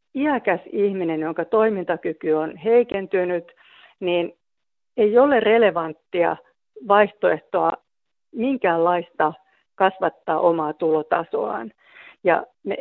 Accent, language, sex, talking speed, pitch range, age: native, Finnish, female, 75 wpm, 170-230 Hz, 50-69